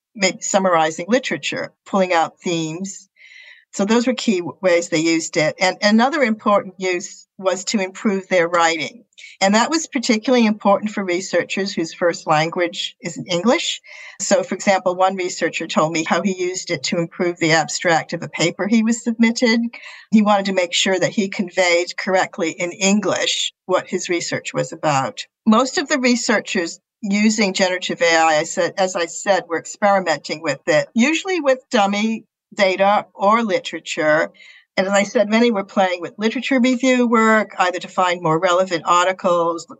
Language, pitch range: English, 175-225 Hz